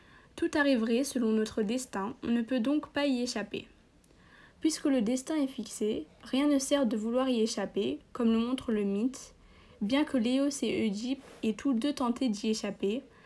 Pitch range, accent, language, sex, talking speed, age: 220-265 Hz, French, French, female, 180 wpm, 20-39